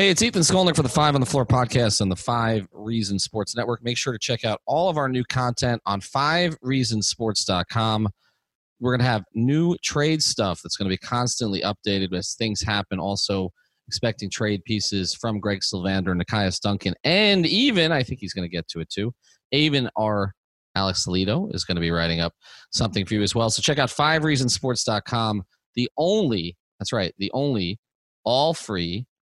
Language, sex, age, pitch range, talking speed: English, male, 30-49, 100-140 Hz, 190 wpm